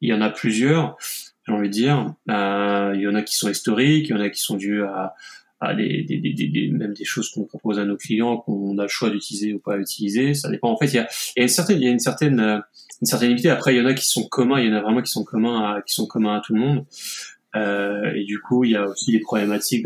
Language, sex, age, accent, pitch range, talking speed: French, male, 20-39, French, 105-120 Hz, 300 wpm